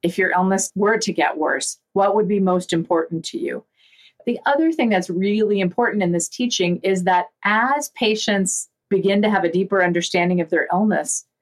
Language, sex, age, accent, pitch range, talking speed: English, female, 40-59, American, 175-210 Hz, 190 wpm